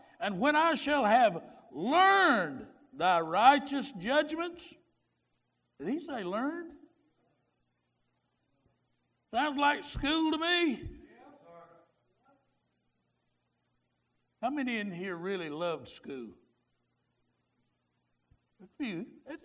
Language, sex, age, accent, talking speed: English, male, 60-79, American, 85 wpm